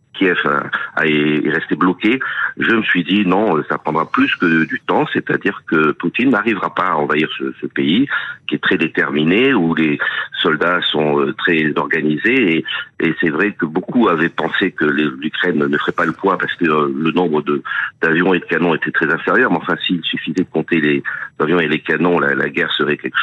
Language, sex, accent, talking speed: French, male, French, 205 wpm